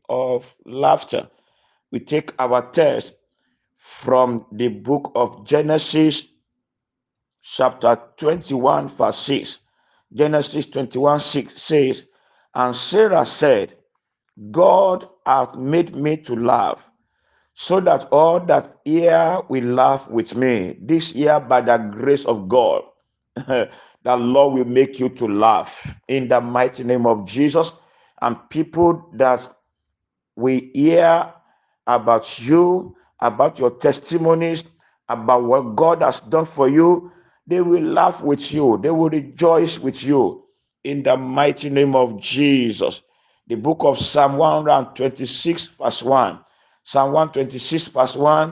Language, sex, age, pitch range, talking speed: English, male, 50-69, 125-160 Hz, 125 wpm